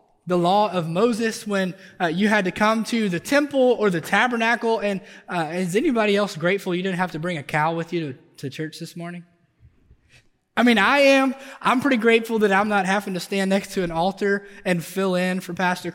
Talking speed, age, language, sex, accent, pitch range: 220 wpm, 20-39, English, male, American, 155-200 Hz